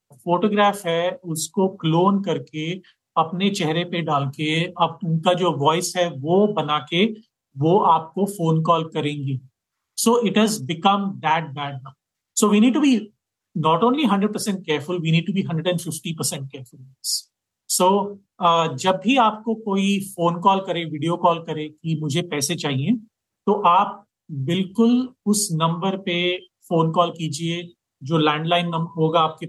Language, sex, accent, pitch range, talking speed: Hindi, male, native, 155-195 Hz, 145 wpm